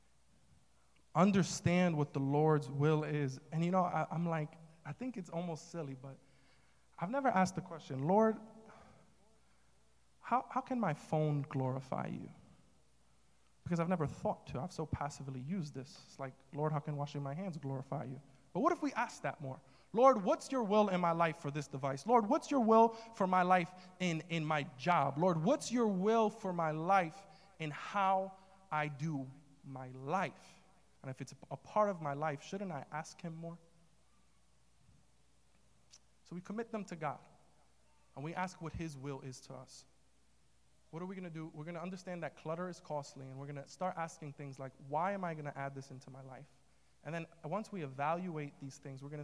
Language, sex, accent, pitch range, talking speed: English, male, American, 140-185 Hz, 195 wpm